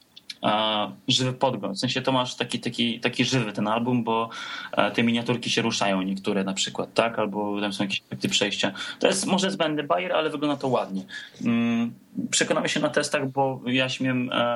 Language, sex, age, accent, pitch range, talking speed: Polish, male, 20-39, native, 105-125 Hz, 175 wpm